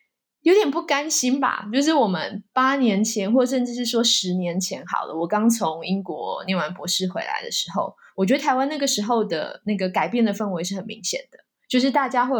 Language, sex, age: Chinese, female, 20-39